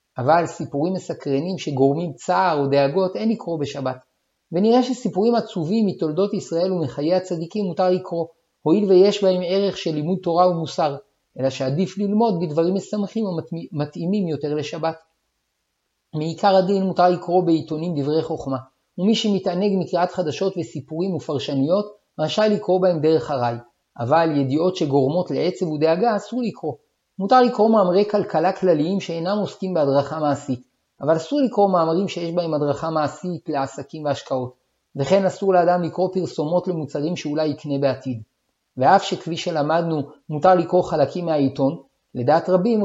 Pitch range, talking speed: 150-190 Hz, 135 wpm